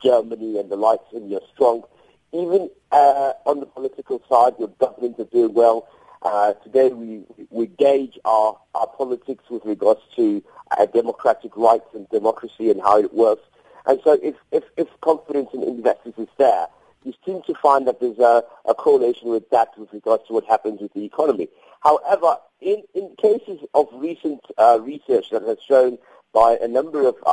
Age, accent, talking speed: 50-69, British, 180 wpm